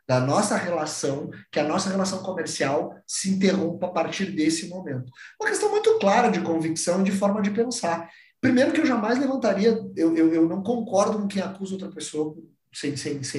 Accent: Brazilian